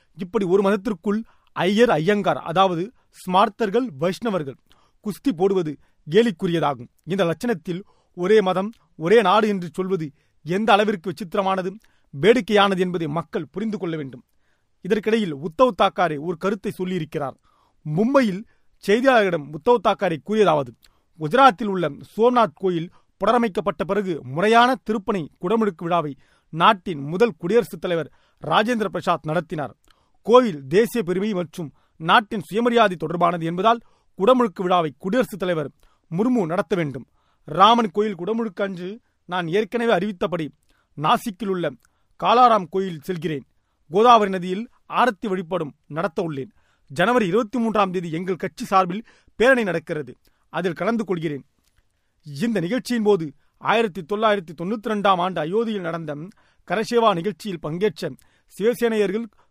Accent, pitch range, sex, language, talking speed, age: native, 175-220 Hz, male, Tamil, 115 wpm, 40-59